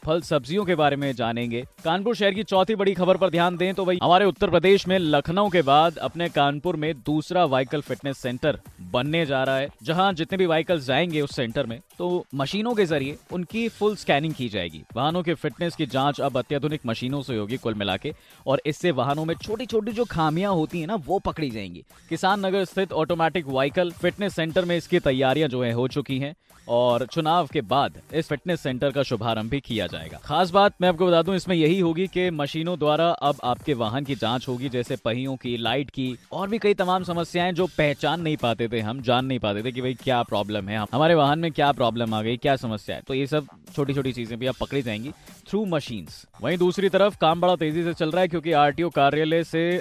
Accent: native